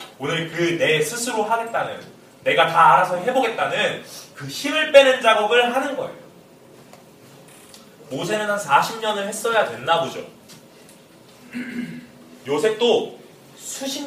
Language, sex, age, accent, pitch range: Korean, male, 30-49, native, 180-265 Hz